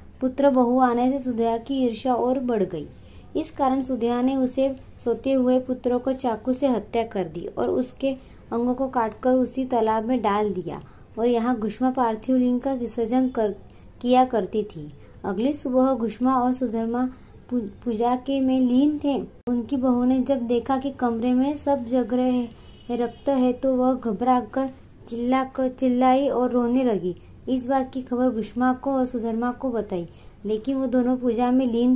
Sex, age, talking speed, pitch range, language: male, 20-39, 175 wpm, 230-255 Hz, Hindi